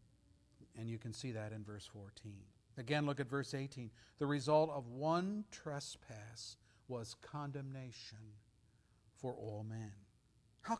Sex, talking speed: male, 135 wpm